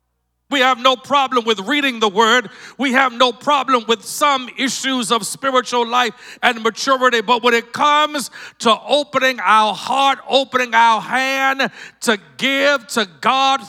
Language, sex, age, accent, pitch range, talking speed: English, male, 50-69, American, 215-270 Hz, 155 wpm